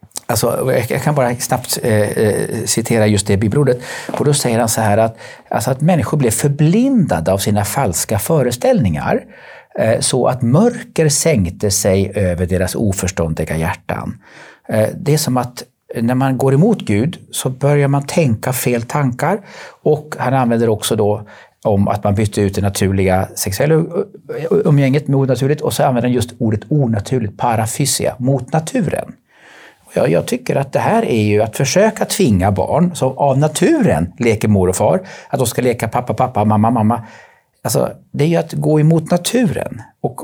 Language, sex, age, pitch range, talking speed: Swedish, male, 40-59, 105-140 Hz, 170 wpm